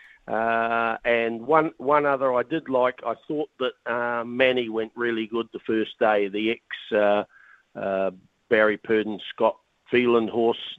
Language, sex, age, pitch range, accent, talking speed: English, male, 50-69, 110-140 Hz, Australian, 150 wpm